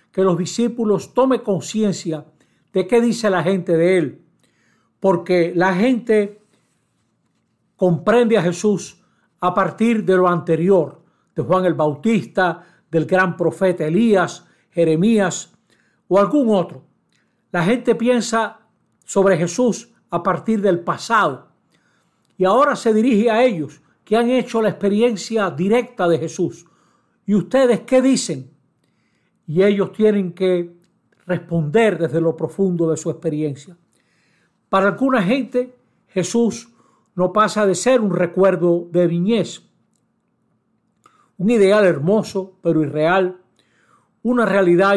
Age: 60-79